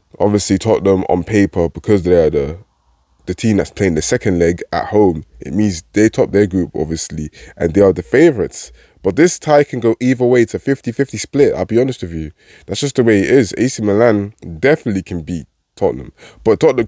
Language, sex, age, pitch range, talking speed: English, male, 20-39, 90-135 Hz, 210 wpm